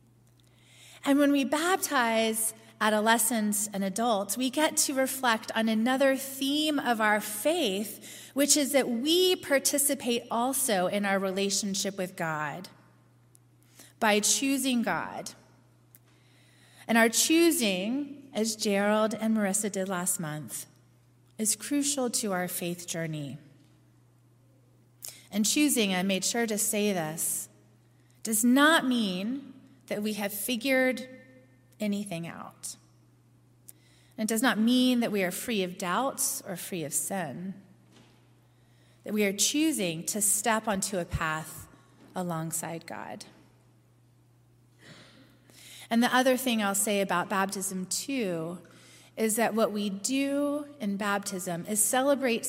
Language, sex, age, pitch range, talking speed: English, female, 30-49, 155-235 Hz, 125 wpm